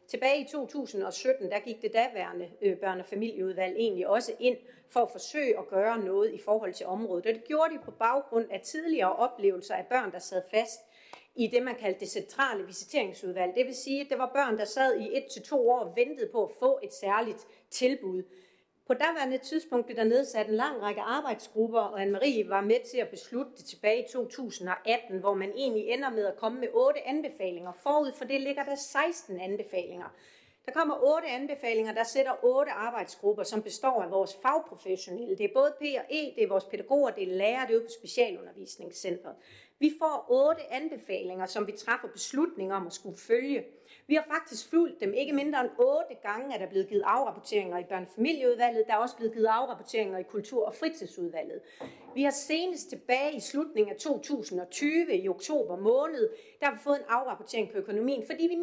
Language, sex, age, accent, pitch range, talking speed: Danish, female, 40-59, native, 210-290 Hz, 200 wpm